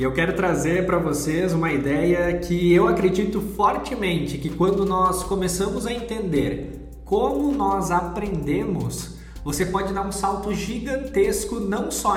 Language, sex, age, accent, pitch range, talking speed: Portuguese, male, 20-39, Brazilian, 175-205 Hz, 145 wpm